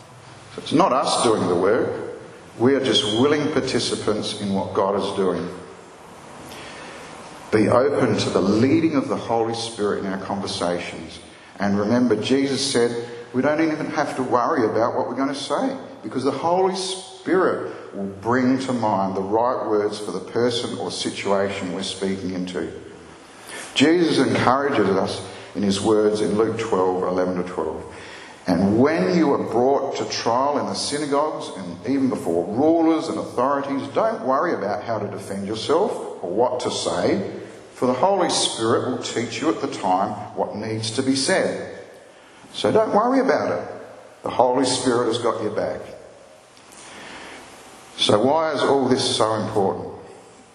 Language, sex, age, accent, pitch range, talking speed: English, male, 50-69, Australian, 100-140 Hz, 160 wpm